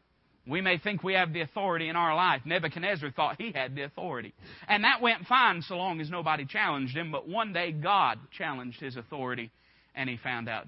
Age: 40-59